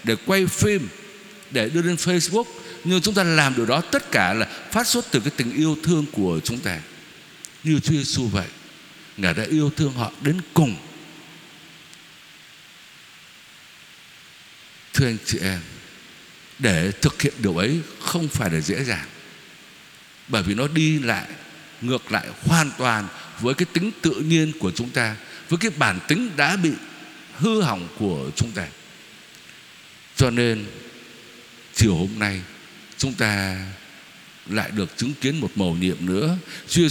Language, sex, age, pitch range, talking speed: Vietnamese, male, 60-79, 105-160 Hz, 155 wpm